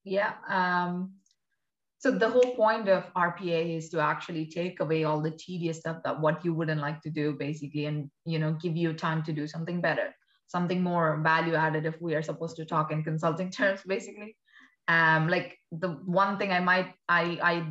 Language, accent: English, Indian